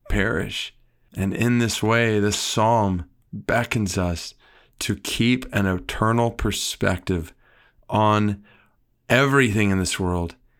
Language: English